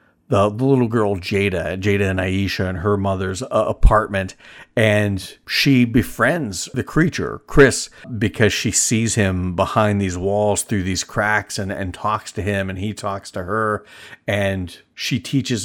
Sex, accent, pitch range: male, American, 95-110 Hz